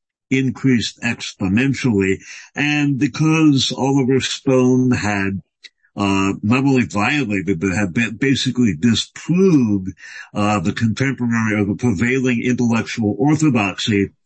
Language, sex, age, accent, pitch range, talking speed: English, male, 60-79, American, 105-135 Hz, 100 wpm